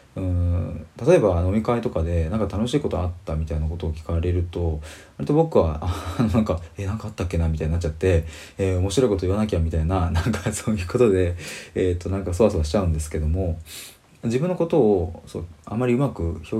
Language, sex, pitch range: Japanese, male, 85-110 Hz